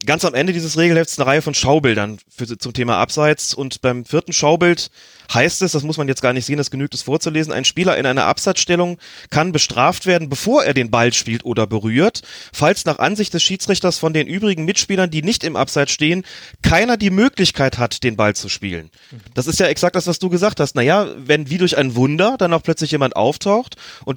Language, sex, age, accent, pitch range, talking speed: German, male, 30-49, German, 125-160 Hz, 215 wpm